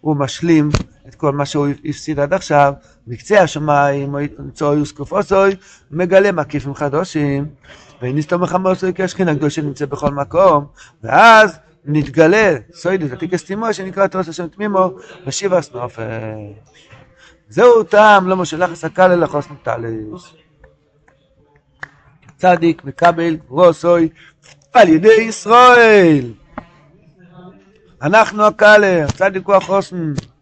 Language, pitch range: Hebrew, 145-190 Hz